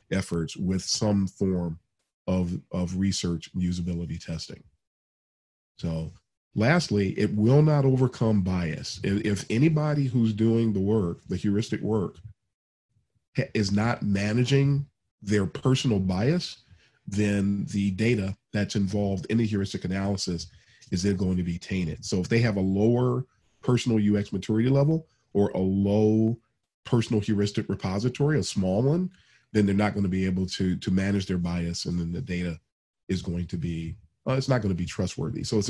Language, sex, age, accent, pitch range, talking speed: English, male, 40-59, American, 95-120 Hz, 160 wpm